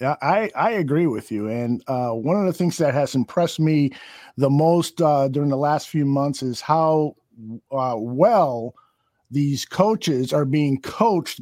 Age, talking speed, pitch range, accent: 50-69, 175 wpm, 135-175 Hz, American